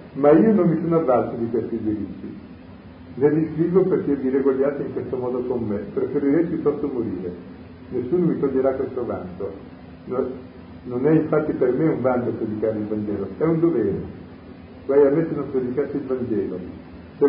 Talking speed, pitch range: 175 wpm, 110-150 Hz